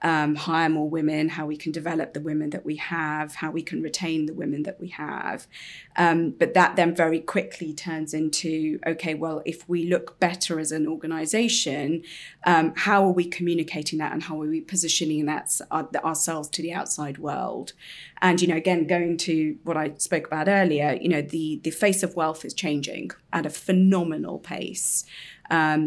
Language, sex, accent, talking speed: English, female, British, 185 wpm